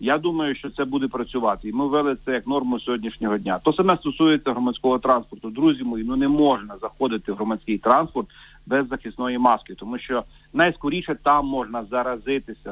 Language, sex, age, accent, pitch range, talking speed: Ukrainian, male, 40-59, native, 130-155 Hz, 175 wpm